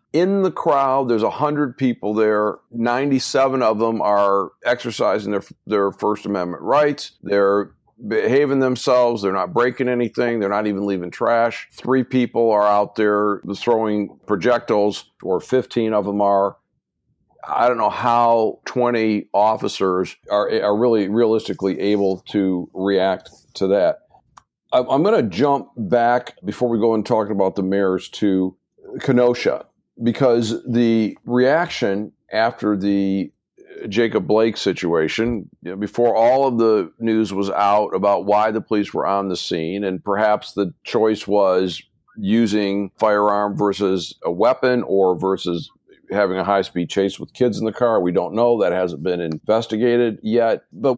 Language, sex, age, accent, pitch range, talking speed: English, male, 50-69, American, 100-120 Hz, 150 wpm